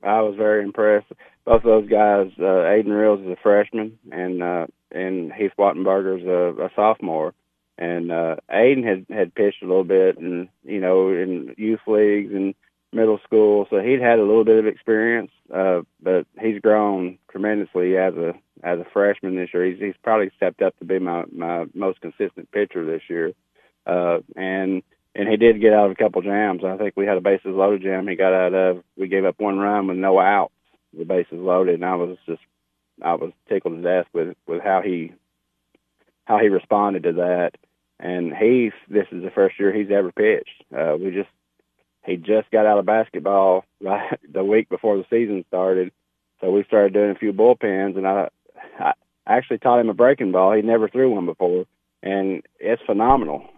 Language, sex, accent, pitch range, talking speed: English, male, American, 90-105 Hz, 200 wpm